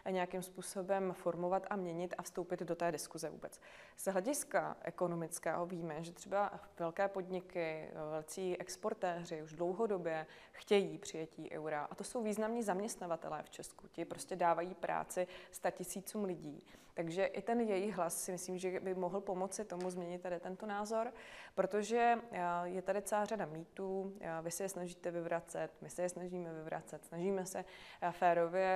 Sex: female